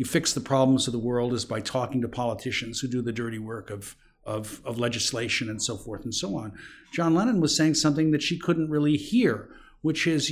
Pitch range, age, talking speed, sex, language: 125-155 Hz, 50-69, 225 wpm, male, English